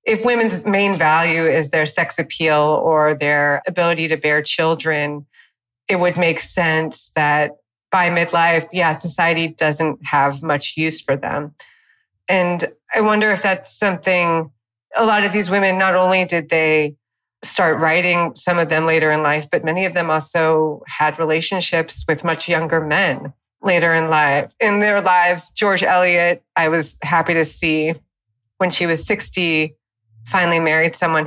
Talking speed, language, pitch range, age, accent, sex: 160 wpm, English, 150-180 Hz, 30-49, American, female